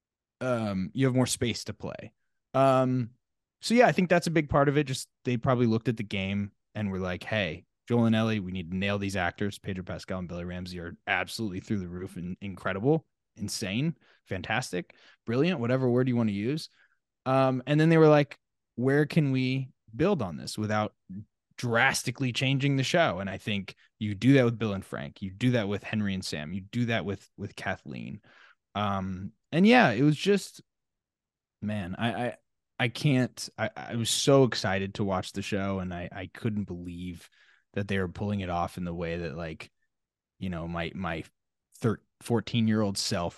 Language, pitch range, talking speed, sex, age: English, 95-130 Hz, 200 wpm, male, 20-39